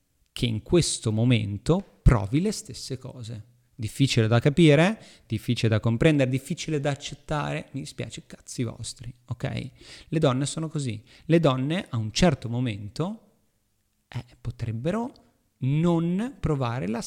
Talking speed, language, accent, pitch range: 130 wpm, Italian, native, 115-150 Hz